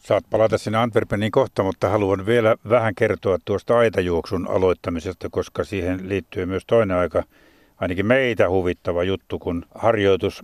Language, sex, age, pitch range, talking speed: Finnish, male, 60-79, 105-130 Hz, 145 wpm